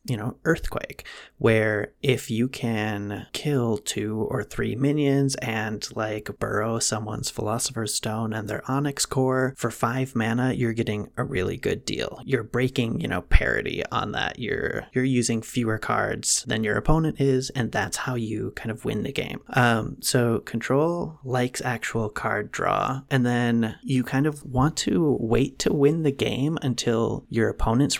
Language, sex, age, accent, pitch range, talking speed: English, male, 30-49, American, 110-130 Hz, 165 wpm